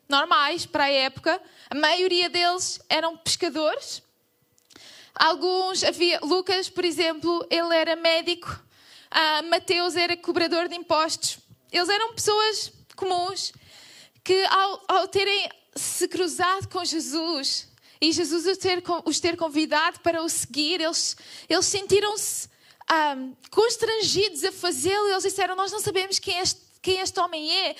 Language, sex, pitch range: Portuguese, female, 320-385 Hz